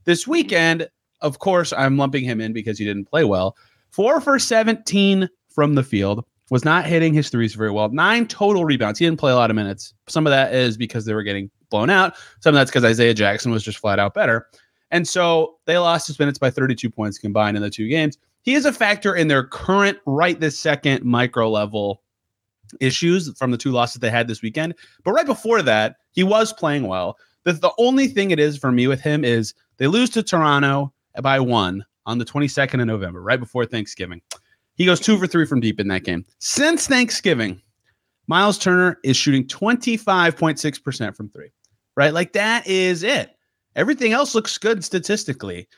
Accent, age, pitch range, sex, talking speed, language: American, 30-49, 115-180 Hz, male, 200 wpm, English